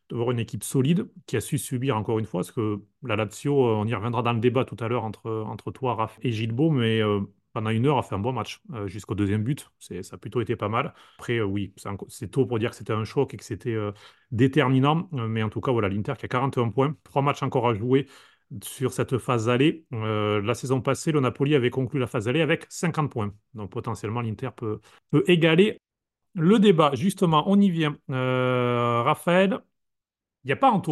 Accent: French